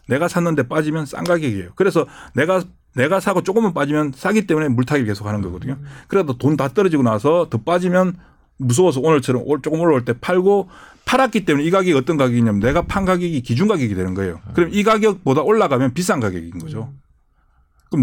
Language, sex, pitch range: Korean, male, 115-175 Hz